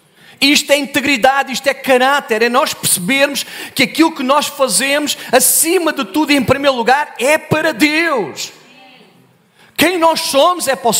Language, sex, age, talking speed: Portuguese, male, 40-59, 160 wpm